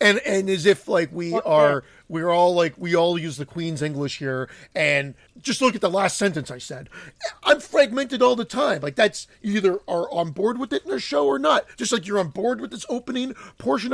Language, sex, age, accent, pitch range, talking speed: English, male, 40-59, American, 160-240 Hz, 235 wpm